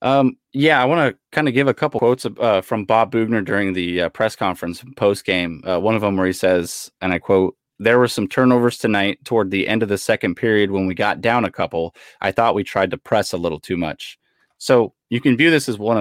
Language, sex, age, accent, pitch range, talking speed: English, male, 30-49, American, 95-115 Hz, 245 wpm